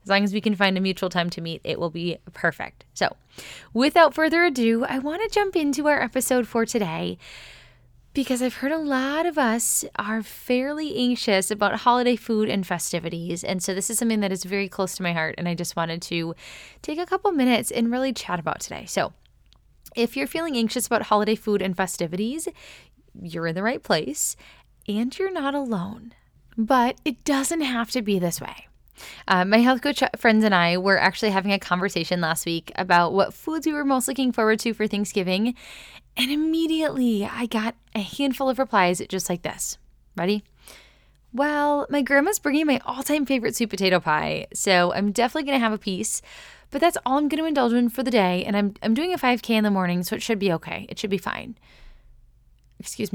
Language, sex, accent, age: English, female, American, 10-29